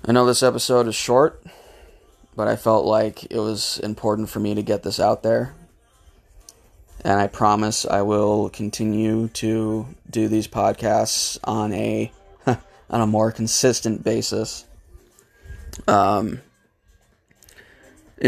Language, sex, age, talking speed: English, male, 20-39, 125 wpm